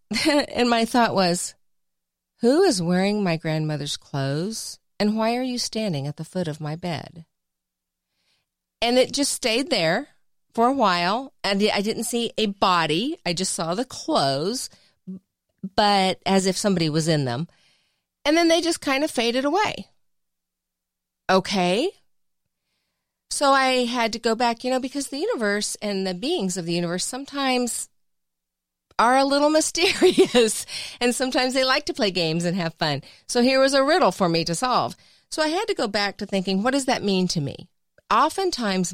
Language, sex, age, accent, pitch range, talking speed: English, female, 40-59, American, 170-250 Hz, 175 wpm